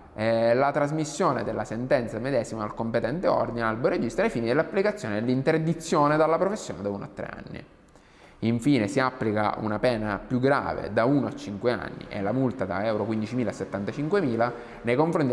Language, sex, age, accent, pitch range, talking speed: Italian, male, 20-39, native, 105-140 Hz, 170 wpm